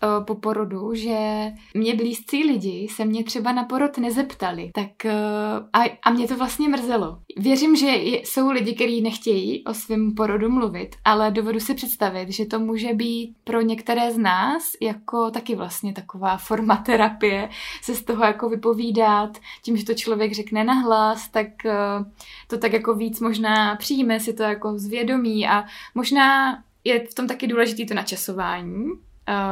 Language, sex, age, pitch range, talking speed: Czech, female, 20-39, 210-235 Hz, 160 wpm